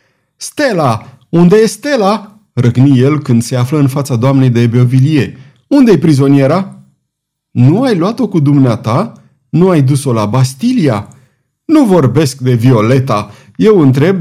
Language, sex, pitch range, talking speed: Romanian, male, 125-175 Hz, 135 wpm